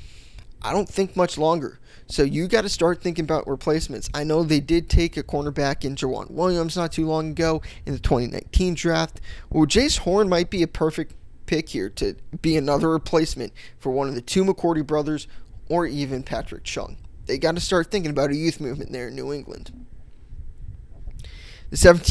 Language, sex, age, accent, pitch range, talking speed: English, male, 20-39, American, 135-175 Hz, 185 wpm